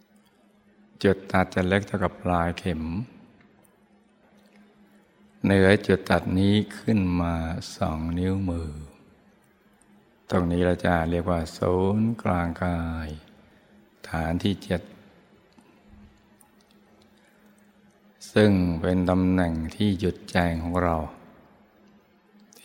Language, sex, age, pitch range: Thai, male, 60-79, 85-105 Hz